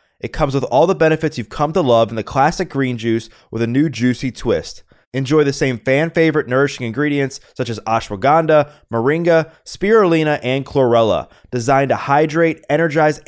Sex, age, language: male, 20-39, English